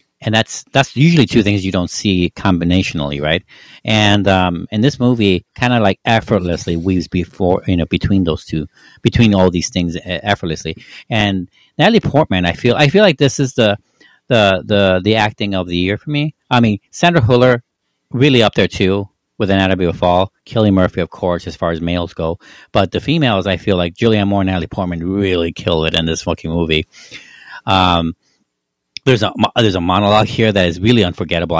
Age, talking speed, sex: 50-69, 195 wpm, male